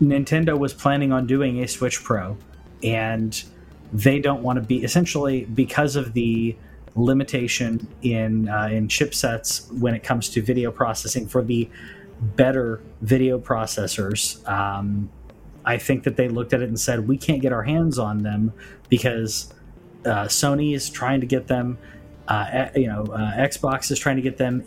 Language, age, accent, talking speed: English, 30-49, American, 170 wpm